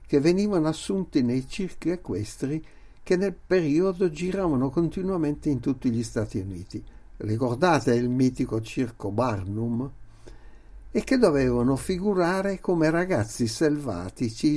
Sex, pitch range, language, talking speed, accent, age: male, 115-160 Hz, Italian, 115 wpm, native, 60-79